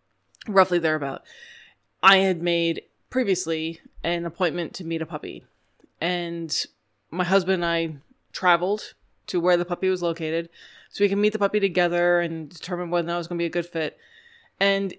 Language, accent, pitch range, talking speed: English, American, 170-225 Hz, 170 wpm